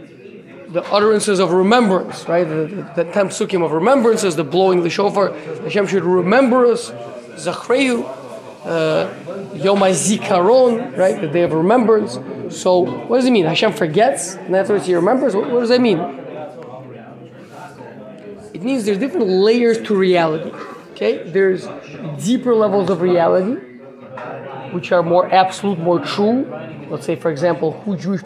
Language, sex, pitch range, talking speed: English, male, 175-235 Hz, 140 wpm